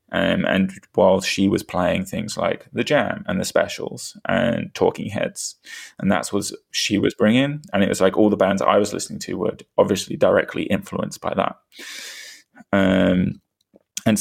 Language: English